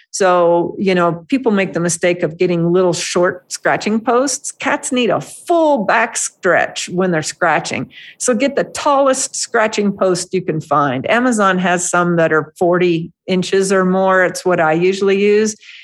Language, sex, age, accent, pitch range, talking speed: English, female, 50-69, American, 170-210 Hz, 165 wpm